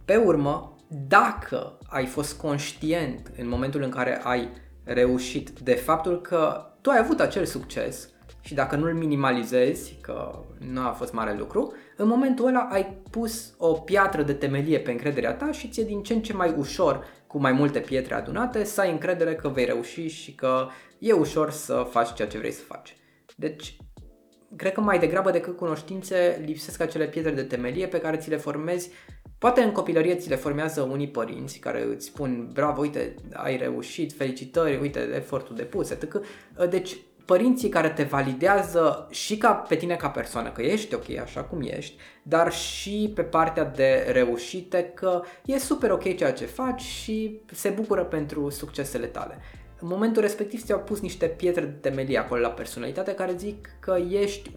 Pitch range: 140-190 Hz